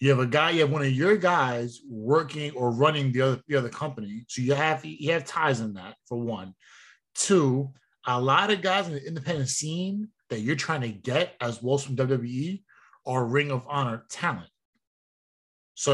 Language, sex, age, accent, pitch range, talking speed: English, male, 20-39, American, 125-160 Hz, 200 wpm